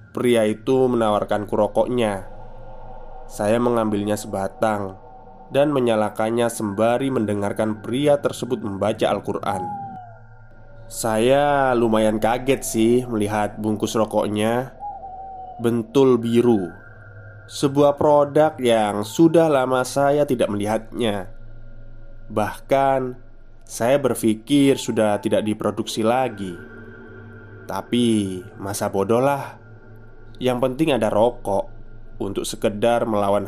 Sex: male